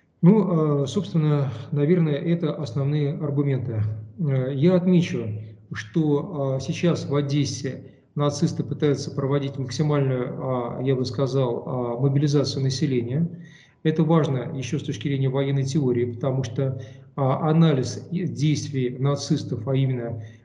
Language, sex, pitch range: Russian, male, 130-155 Hz